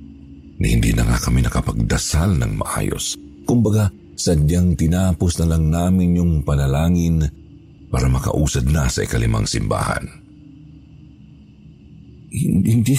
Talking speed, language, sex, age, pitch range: 105 wpm, Filipino, male, 50-69, 70-100 Hz